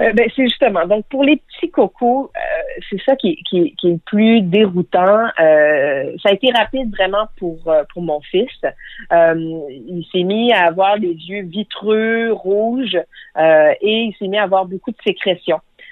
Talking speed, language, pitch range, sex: 180 wpm, French, 175-210 Hz, female